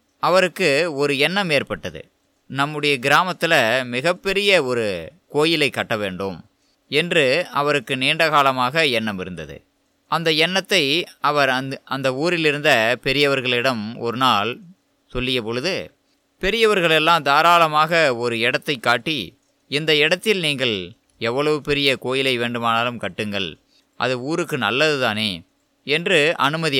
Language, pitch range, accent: Tamil, 120-165 Hz, native